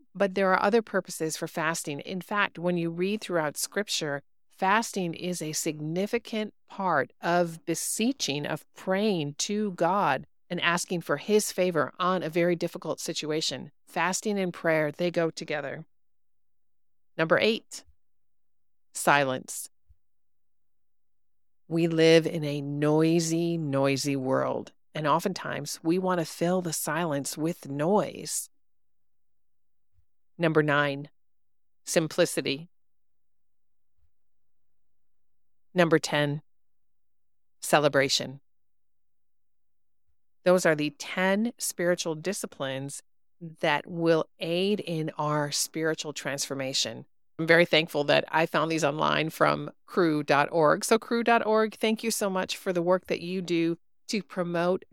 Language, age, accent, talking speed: English, 40-59, American, 115 wpm